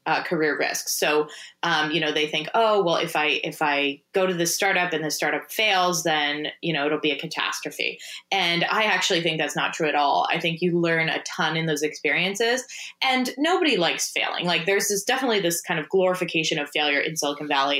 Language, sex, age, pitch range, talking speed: English, female, 20-39, 155-205 Hz, 220 wpm